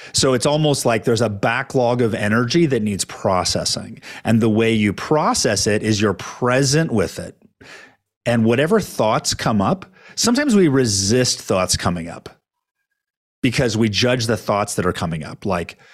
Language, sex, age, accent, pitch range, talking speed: English, male, 40-59, American, 110-145 Hz, 165 wpm